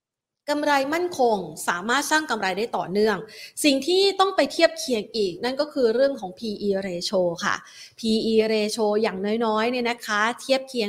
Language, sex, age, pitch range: Thai, female, 30-49, 205-270 Hz